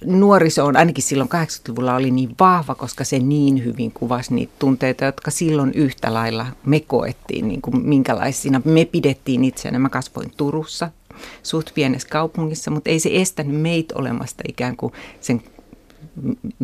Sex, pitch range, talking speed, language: female, 130-155 Hz, 155 wpm, Finnish